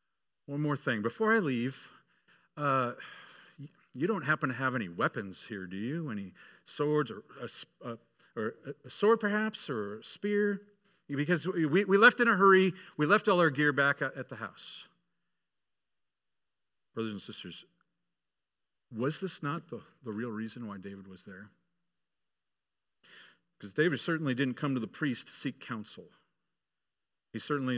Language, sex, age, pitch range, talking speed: English, male, 50-69, 100-150 Hz, 155 wpm